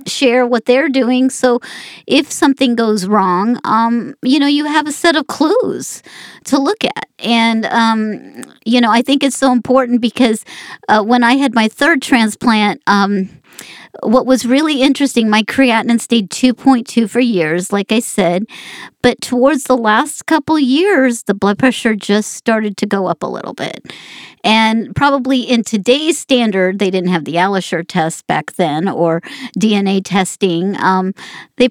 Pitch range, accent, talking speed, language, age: 200-255 Hz, American, 165 wpm, English, 50-69